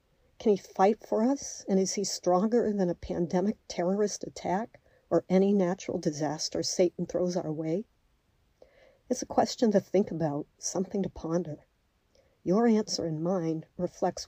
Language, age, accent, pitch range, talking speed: English, 50-69, American, 170-195 Hz, 150 wpm